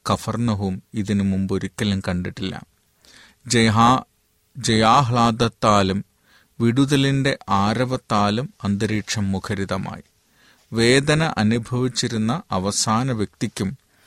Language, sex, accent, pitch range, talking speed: Malayalam, male, native, 95-120 Hz, 50 wpm